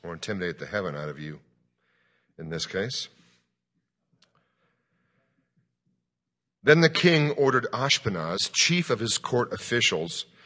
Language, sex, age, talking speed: English, male, 50-69, 115 wpm